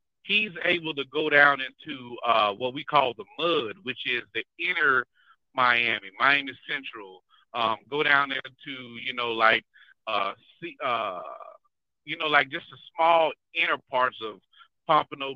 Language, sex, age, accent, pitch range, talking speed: English, male, 50-69, American, 120-155 Hz, 150 wpm